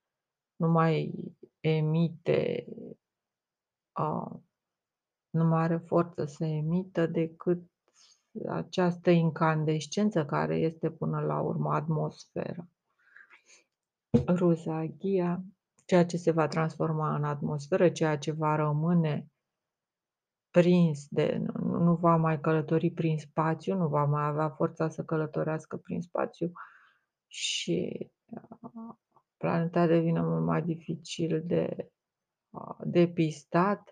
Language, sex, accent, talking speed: Romanian, female, native, 105 wpm